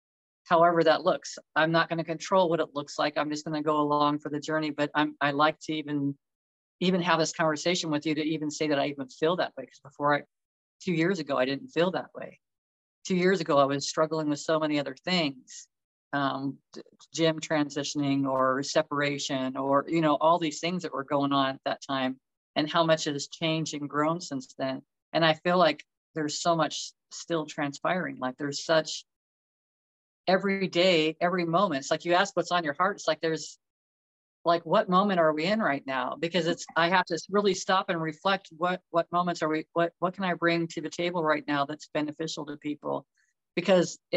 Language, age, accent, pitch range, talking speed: English, 40-59, American, 145-175 Hz, 210 wpm